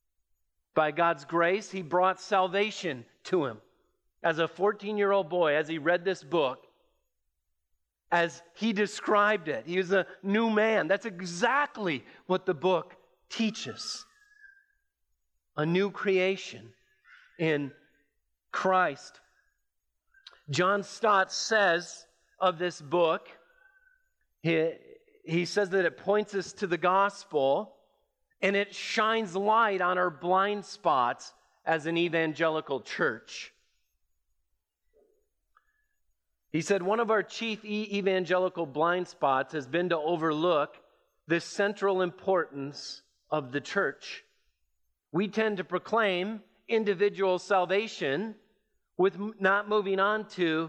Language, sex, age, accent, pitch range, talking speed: English, male, 40-59, American, 170-210 Hz, 110 wpm